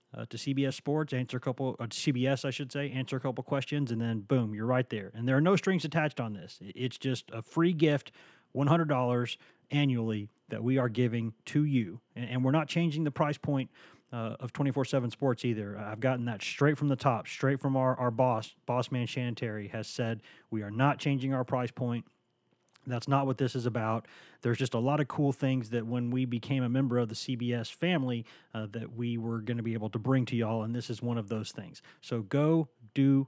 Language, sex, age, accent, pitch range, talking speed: English, male, 30-49, American, 115-140 Hz, 220 wpm